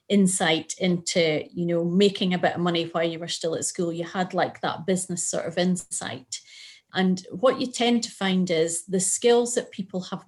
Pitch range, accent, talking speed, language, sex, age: 170-195 Hz, British, 205 wpm, English, female, 30-49